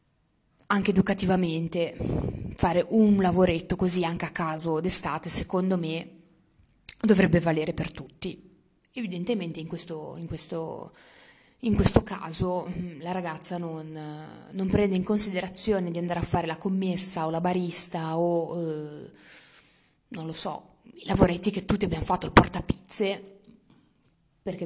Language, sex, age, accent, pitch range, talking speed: Italian, female, 20-39, native, 170-205 Hz, 130 wpm